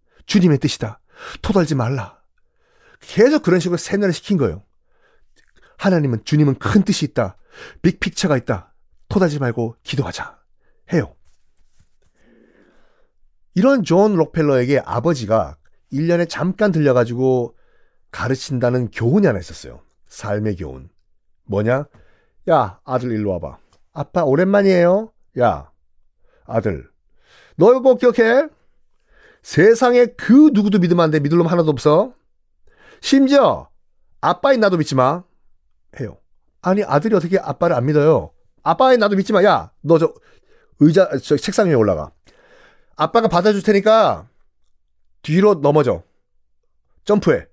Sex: male